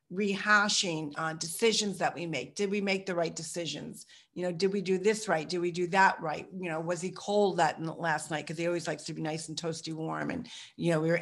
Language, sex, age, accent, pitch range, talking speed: English, female, 40-59, American, 165-200 Hz, 260 wpm